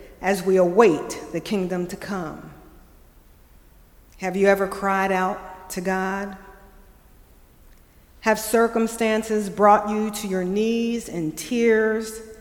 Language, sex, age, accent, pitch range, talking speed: English, female, 50-69, American, 185-240 Hz, 110 wpm